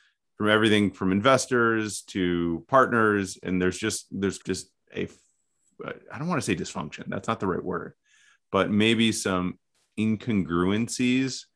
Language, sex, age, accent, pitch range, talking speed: English, male, 30-49, American, 90-110 Hz, 140 wpm